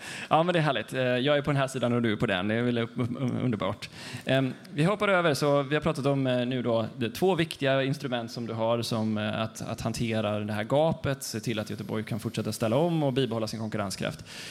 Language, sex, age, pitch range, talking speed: Swedish, male, 20-39, 110-140 Hz, 230 wpm